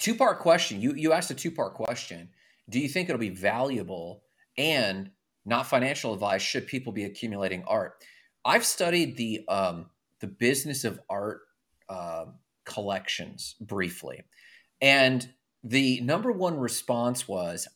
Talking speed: 135 wpm